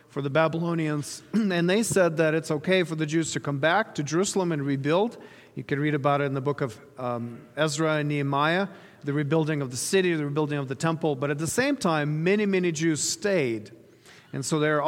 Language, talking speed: English, 220 wpm